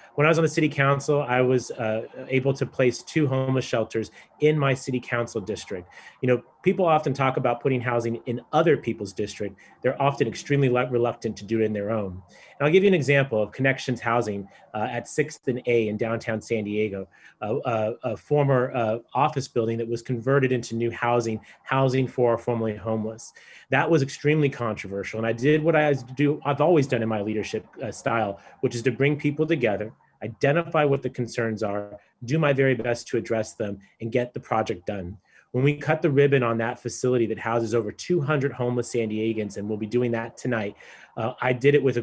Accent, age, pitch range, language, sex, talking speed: American, 30-49, 115-135 Hz, English, male, 205 wpm